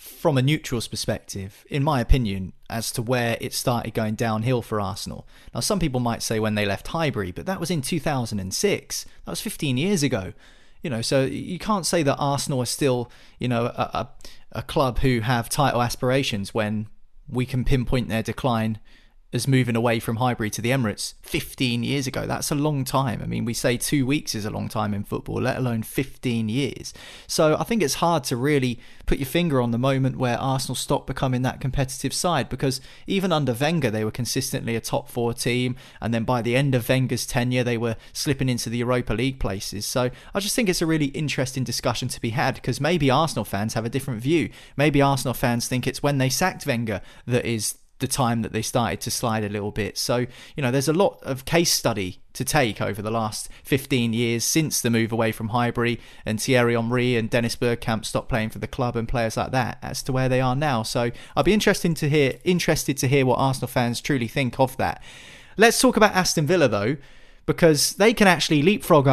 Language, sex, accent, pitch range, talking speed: English, male, British, 115-140 Hz, 215 wpm